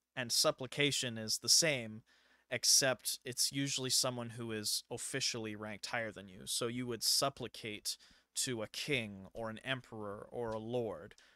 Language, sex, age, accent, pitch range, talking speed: English, male, 20-39, American, 110-130 Hz, 155 wpm